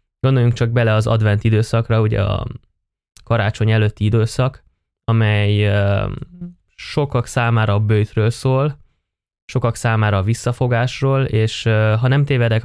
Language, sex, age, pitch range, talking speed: Hungarian, male, 20-39, 105-125 Hz, 120 wpm